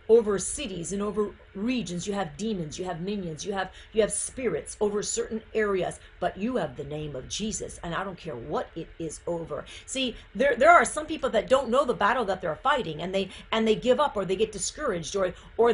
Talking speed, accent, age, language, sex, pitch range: 230 wpm, American, 50-69, English, female, 210-300 Hz